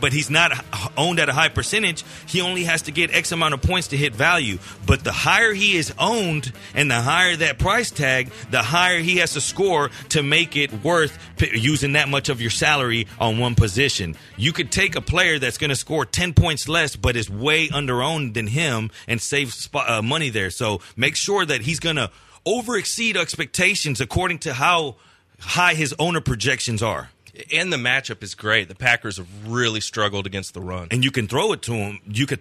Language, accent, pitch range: English, American, 120-165 Hz